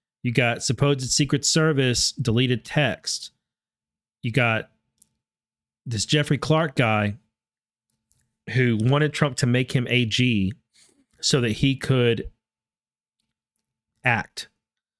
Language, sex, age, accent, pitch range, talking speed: English, male, 30-49, American, 115-150 Hz, 100 wpm